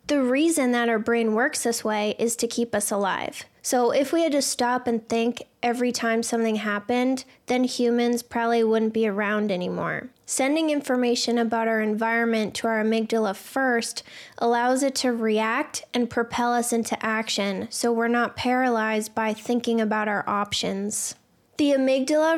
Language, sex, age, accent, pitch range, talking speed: English, female, 10-29, American, 225-255 Hz, 165 wpm